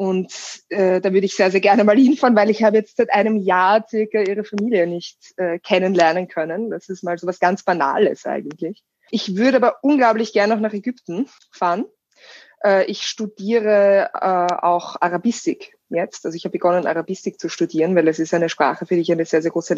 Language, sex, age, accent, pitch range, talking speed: German, female, 20-39, German, 170-205 Hz, 205 wpm